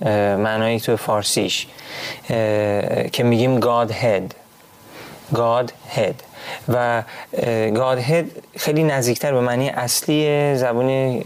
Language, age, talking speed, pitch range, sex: Persian, 30-49, 80 wpm, 115-150 Hz, male